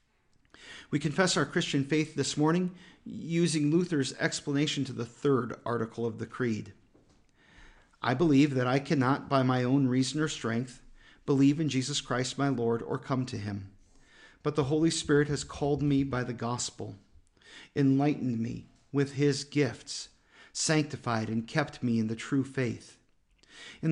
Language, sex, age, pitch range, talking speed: English, male, 40-59, 120-150 Hz, 155 wpm